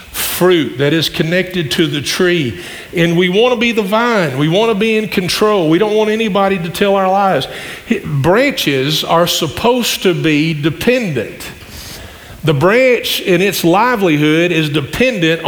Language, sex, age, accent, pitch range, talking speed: English, male, 50-69, American, 170-215 Hz, 160 wpm